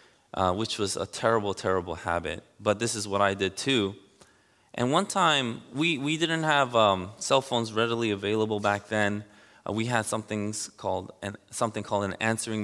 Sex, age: male, 20-39